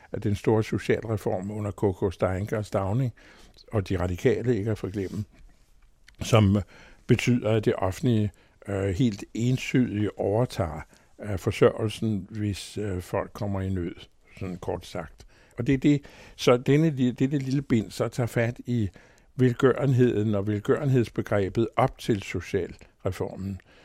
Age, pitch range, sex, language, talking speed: 60-79, 100-125 Hz, male, Danish, 140 wpm